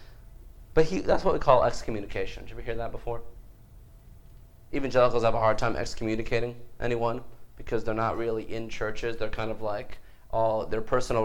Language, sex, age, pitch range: English, male, 30-49, 100-120 Hz